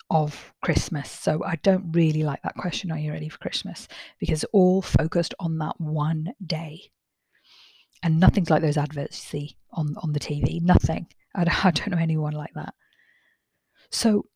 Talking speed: 165 wpm